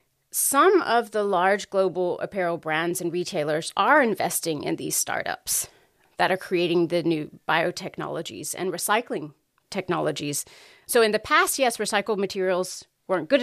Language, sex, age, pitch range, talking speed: English, female, 30-49, 180-230 Hz, 145 wpm